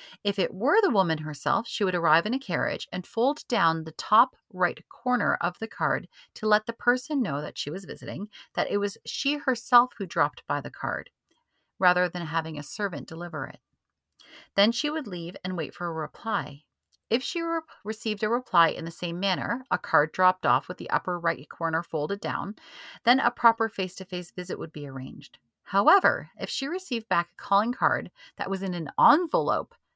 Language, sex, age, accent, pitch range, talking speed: English, female, 40-59, American, 160-220 Hz, 200 wpm